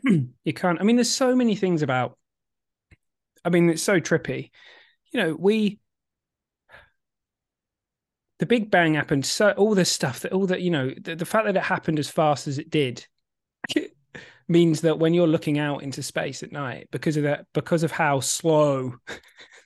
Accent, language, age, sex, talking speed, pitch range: British, English, 30-49, male, 175 wpm, 135-175 Hz